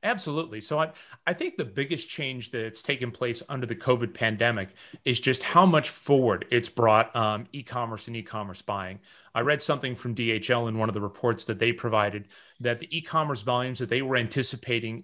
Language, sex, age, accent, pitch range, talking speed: English, male, 30-49, American, 115-130 Hz, 190 wpm